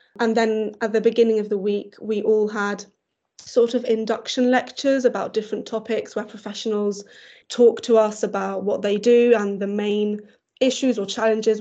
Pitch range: 210-235 Hz